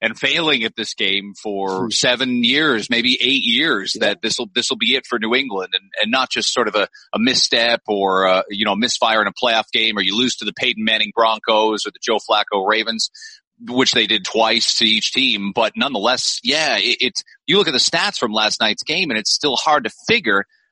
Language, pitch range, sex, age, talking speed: English, 110-140 Hz, male, 30-49, 230 wpm